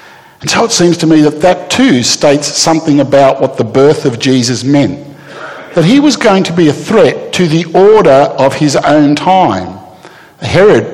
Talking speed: 185 wpm